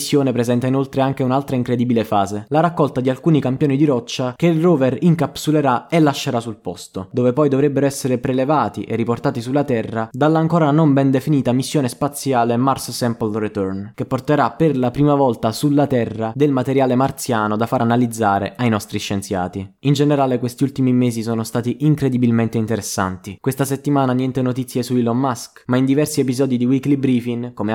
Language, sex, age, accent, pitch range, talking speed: Italian, male, 20-39, native, 115-140 Hz, 180 wpm